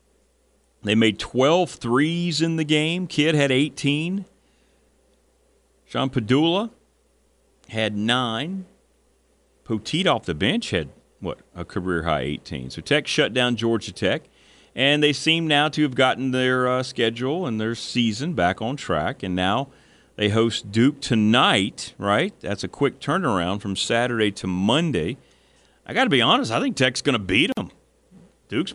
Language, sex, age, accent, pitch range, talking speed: English, male, 40-59, American, 110-180 Hz, 150 wpm